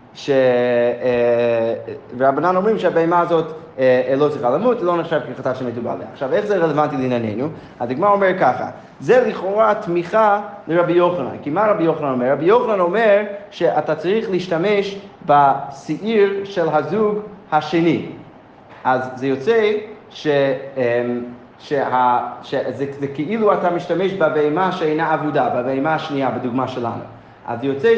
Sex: male